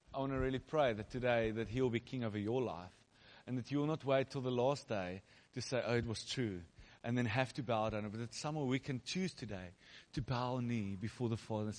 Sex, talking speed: male, 265 wpm